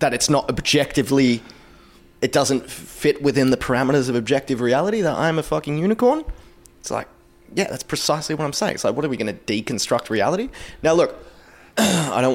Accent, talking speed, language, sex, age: Australian, 190 wpm, English, male, 20-39